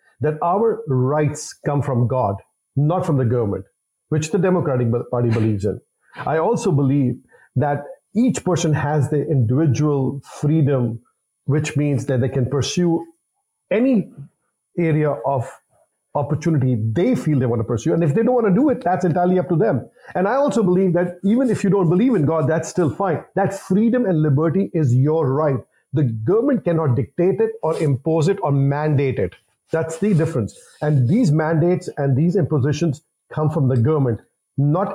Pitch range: 140-190 Hz